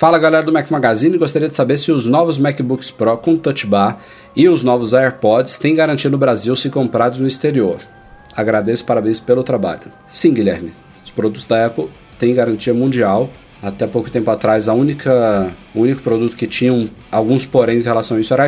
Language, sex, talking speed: Portuguese, male, 195 wpm